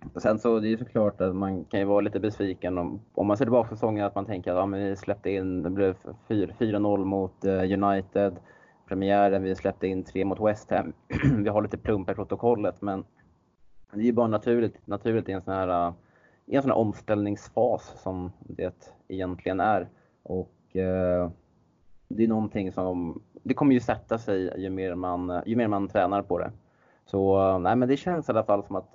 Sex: male